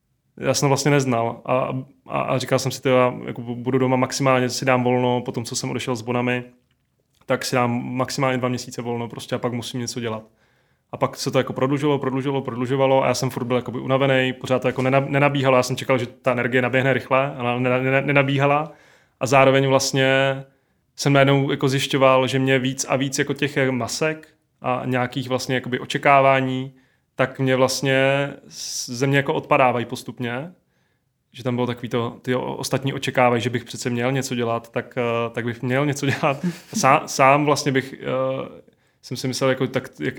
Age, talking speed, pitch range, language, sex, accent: 20-39, 185 wpm, 125-135 Hz, Czech, male, native